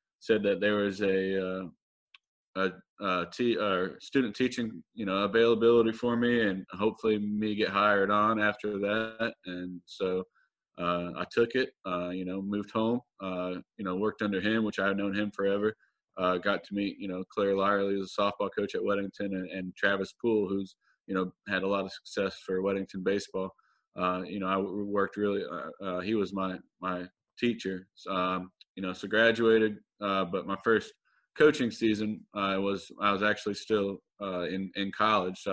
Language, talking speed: English, 185 wpm